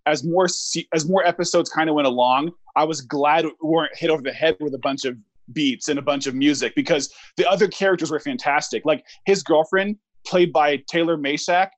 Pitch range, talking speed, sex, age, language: 155-190 Hz, 210 wpm, male, 20-39, English